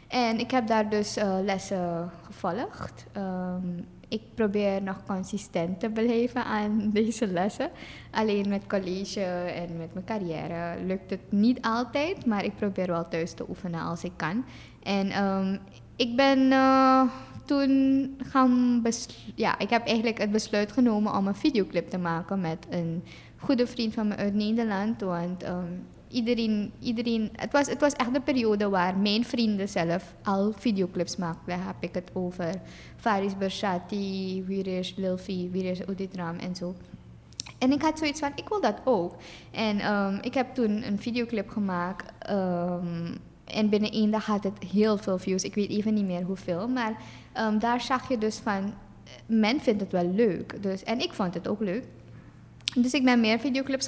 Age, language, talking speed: 20-39, Dutch, 165 wpm